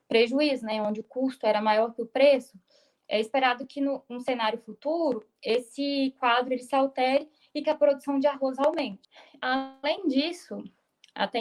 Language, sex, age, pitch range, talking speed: Portuguese, female, 10-29, 225-275 Hz, 165 wpm